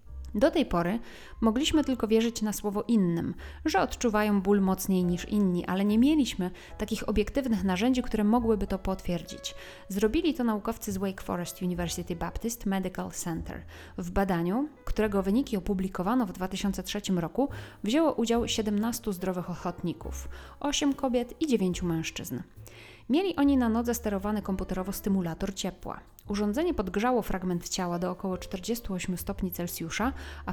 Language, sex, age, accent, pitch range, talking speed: Polish, female, 30-49, native, 185-235 Hz, 140 wpm